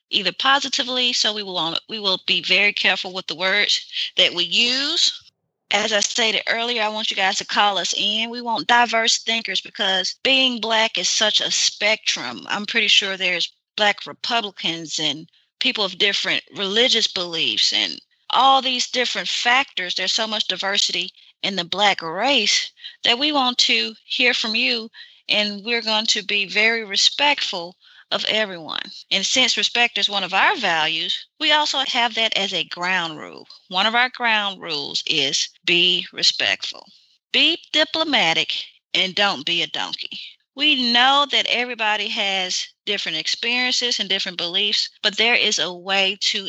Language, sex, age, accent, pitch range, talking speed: English, female, 30-49, American, 190-250 Hz, 165 wpm